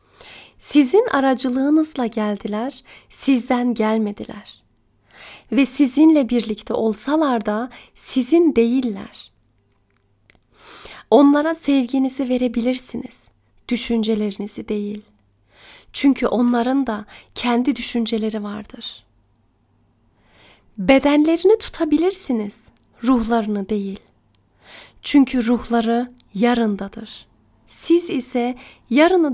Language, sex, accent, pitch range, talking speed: Turkish, female, native, 200-255 Hz, 65 wpm